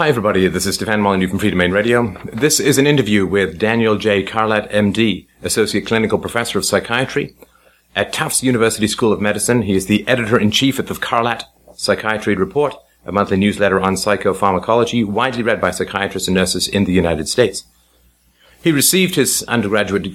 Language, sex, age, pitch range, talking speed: English, male, 40-59, 95-115 Hz, 180 wpm